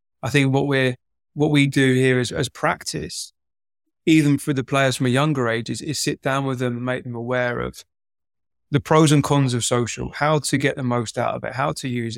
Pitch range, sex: 125-150 Hz, male